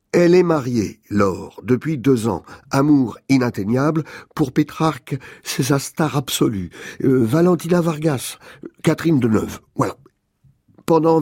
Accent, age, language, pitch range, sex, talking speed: French, 50-69, French, 120-140 Hz, male, 125 wpm